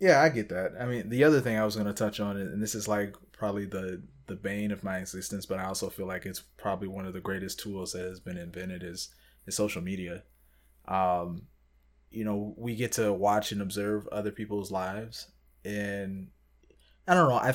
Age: 20-39